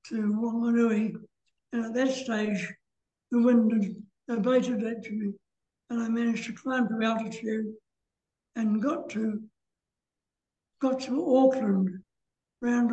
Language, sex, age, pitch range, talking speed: English, male, 60-79, 220-255 Hz, 120 wpm